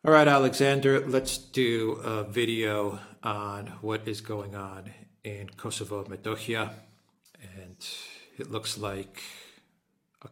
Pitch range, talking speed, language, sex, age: 100-120 Hz, 110 wpm, English, male, 40-59